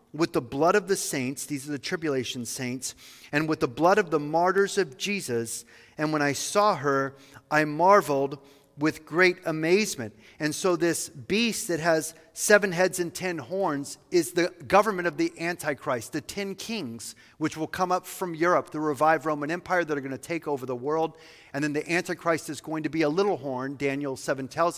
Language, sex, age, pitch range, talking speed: English, male, 40-59, 140-180 Hz, 200 wpm